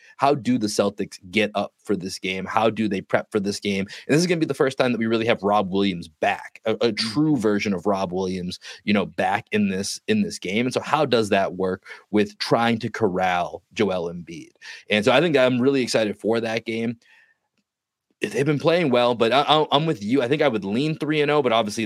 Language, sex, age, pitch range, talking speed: English, male, 30-49, 100-125 Hz, 240 wpm